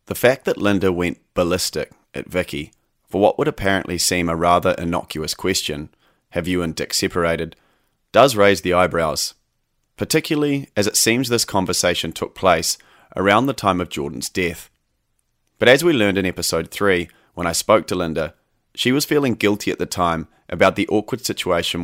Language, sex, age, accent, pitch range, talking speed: English, male, 30-49, Australian, 85-110 Hz, 175 wpm